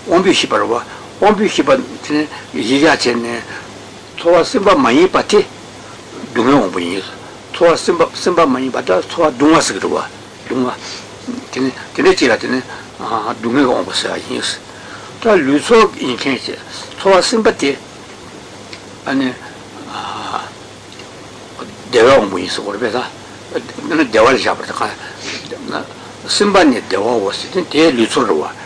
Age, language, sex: 60-79, Italian, male